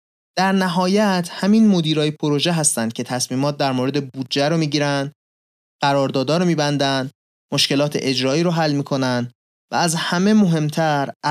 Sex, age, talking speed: male, 30-49, 145 wpm